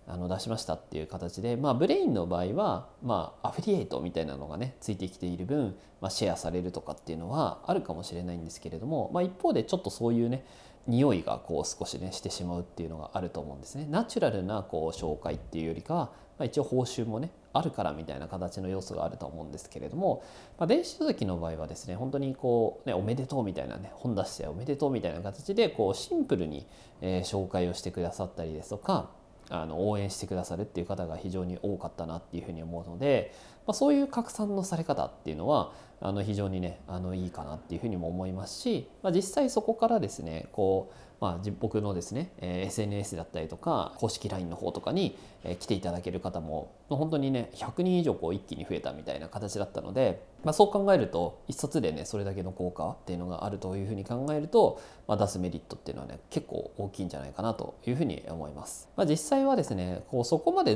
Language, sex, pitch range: Japanese, male, 85-125 Hz